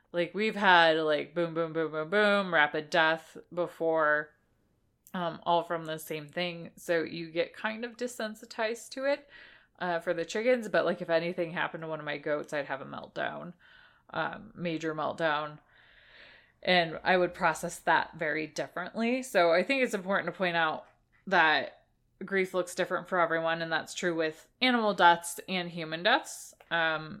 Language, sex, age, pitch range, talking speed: English, female, 20-39, 160-190 Hz, 170 wpm